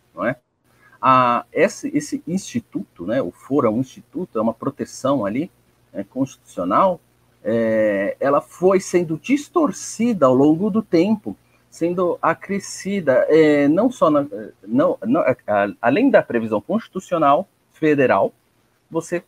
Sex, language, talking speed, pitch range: male, Portuguese, 125 wpm, 135-190 Hz